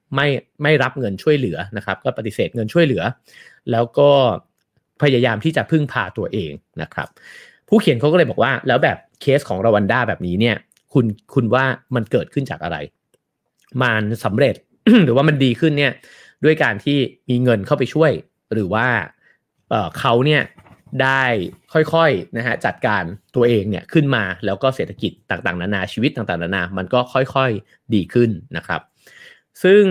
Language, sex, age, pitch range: English, male, 30-49, 105-140 Hz